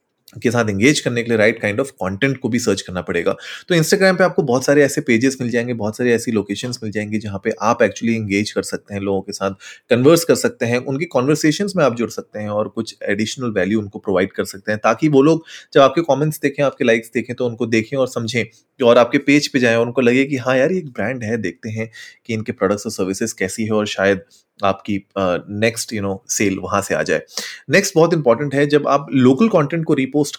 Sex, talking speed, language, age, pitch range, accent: male, 240 wpm, Hindi, 30-49, 105-135 Hz, native